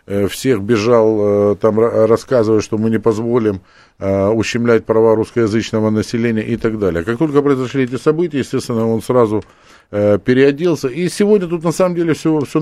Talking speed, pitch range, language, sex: 145 wpm, 115-155 Hz, Russian, male